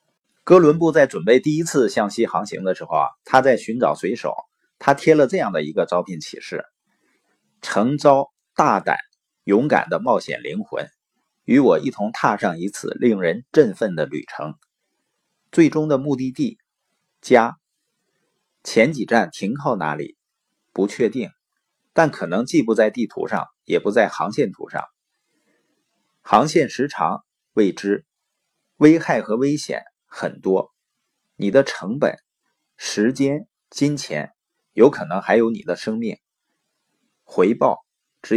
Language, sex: Chinese, male